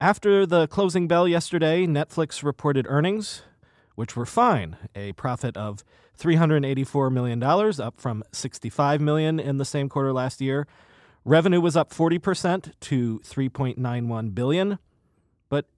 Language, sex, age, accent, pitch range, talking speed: English, male, 40-59, American, 125-170 Hz, 130 wpm